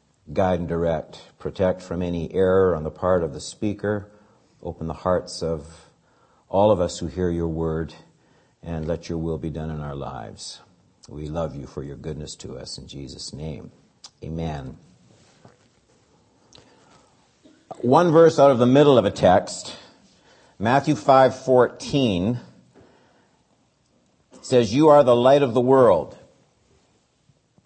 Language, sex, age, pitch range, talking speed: English, male, 60-79, 85-135 Hz, 140 wpm